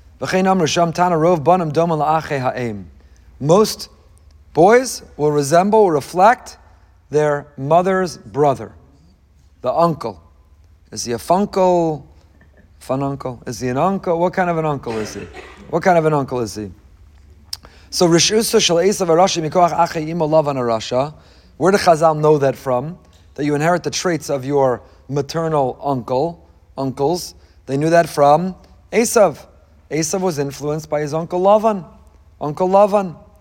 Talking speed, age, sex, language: 120 wpm, 40-59, male, English